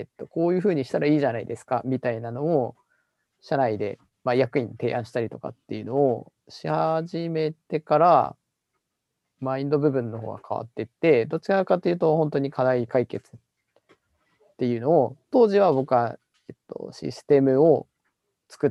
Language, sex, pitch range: Japanese, male, 125-165 Hz